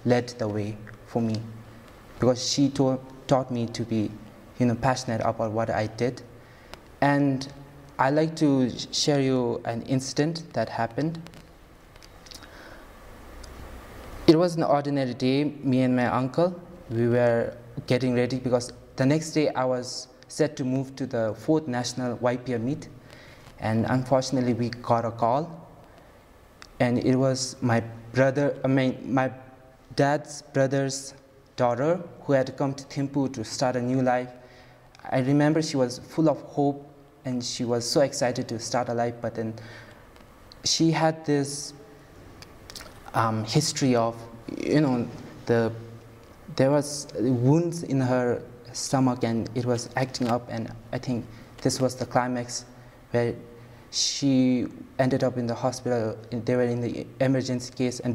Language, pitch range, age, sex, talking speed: English, 120-135 Hz, 20-39, male, 150 wpm